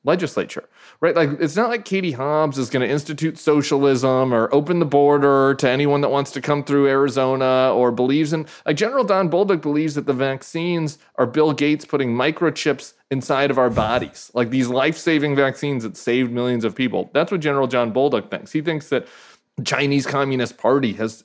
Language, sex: English, male